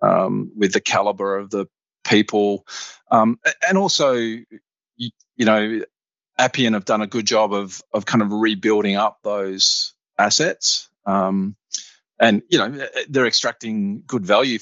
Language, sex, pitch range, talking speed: English, male, 100-120 Hz, 145 wpm